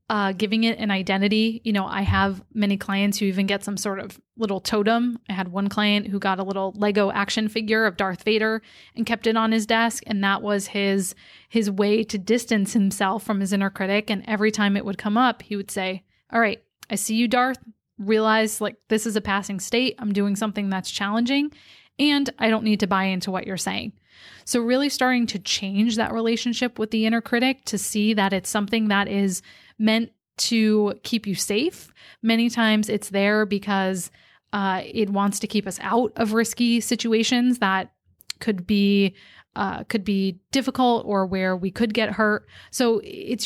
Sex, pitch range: female, 200-225 Hz